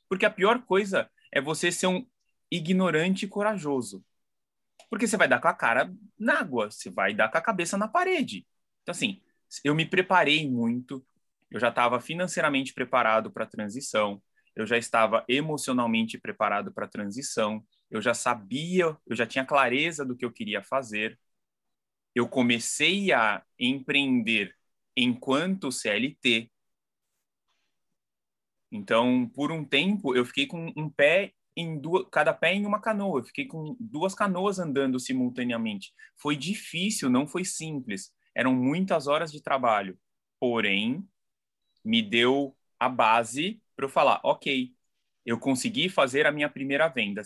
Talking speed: 145 wpm